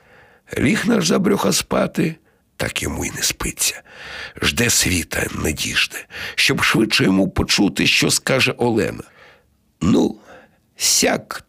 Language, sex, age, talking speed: Ukrainian, male, 60-79, 120 wpm